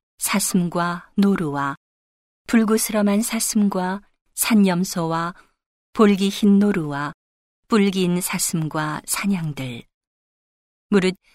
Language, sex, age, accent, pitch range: Korean, female, 40-59, native, 160-200 Hz